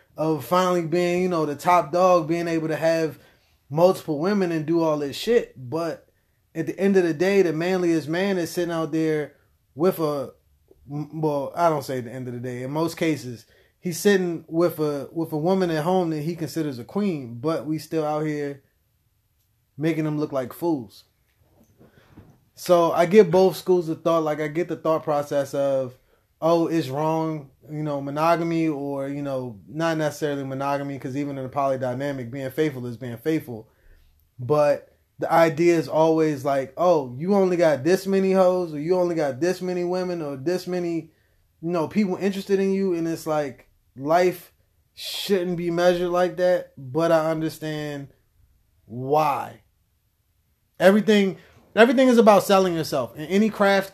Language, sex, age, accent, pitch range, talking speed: English, male, 20-39, American, 140-180 Hz, 175 wpm